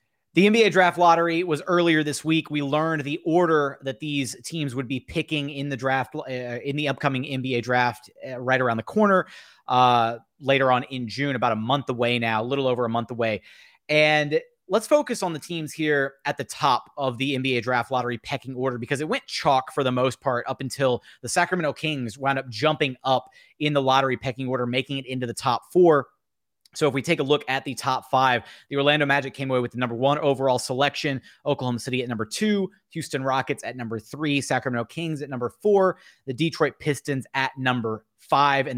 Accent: American